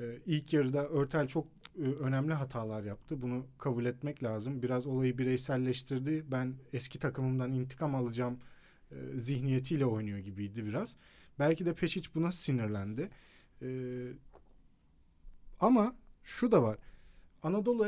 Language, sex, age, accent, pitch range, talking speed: Turkish, male, 40-59, native, 130-185 Hz, 120 wpm